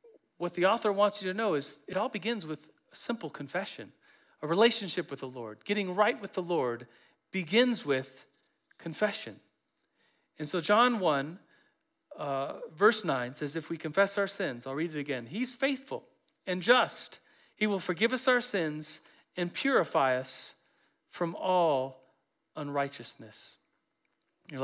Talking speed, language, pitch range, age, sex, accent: 150 wpm, English, 150-215 Hz, 40-59, male, American